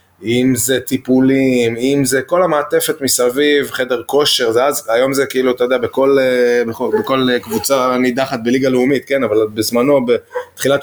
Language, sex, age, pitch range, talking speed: Hebrew, male, 20-39, 110-140 Hz, 145 wpm